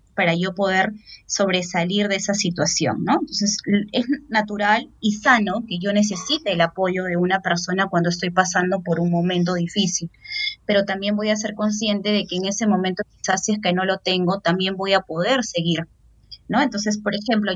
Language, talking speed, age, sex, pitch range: Spanish, 190 wpm, 20-39, female, 180-210 Hz